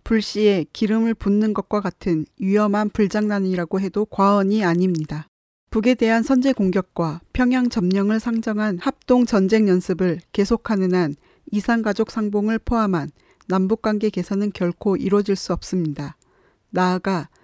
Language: Korean